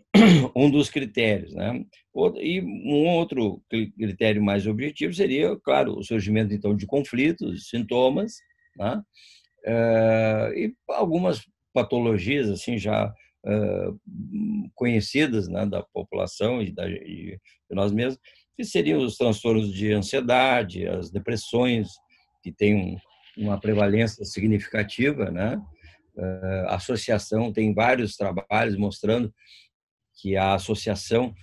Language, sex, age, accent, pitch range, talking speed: Portuguese, male, 50-69, Brazilian, 100-125 Hz, 105 wpm